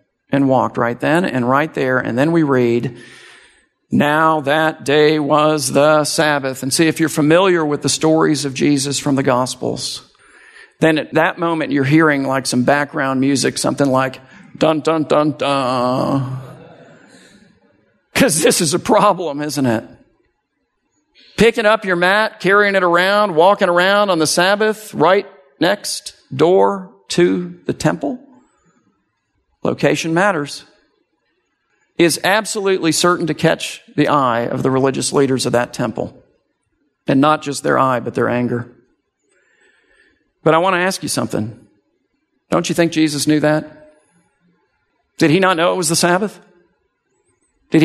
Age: 50-69